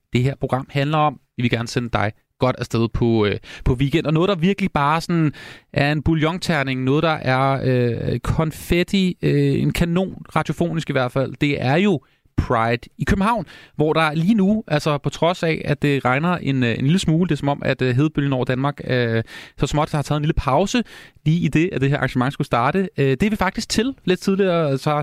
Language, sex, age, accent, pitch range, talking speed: Danish, male, 30-49, native, 130-165 Hz, 225 wpm